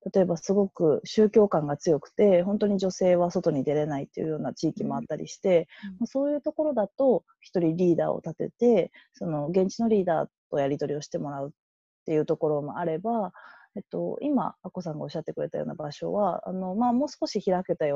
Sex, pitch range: female, 165-240 Hz